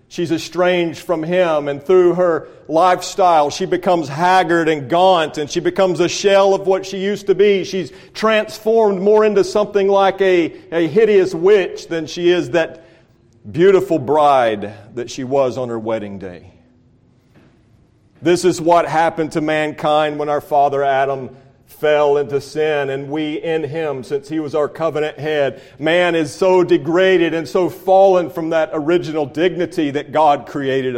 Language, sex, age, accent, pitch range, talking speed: English, male, 40-59, American, 140-190 Hz, 165 wpm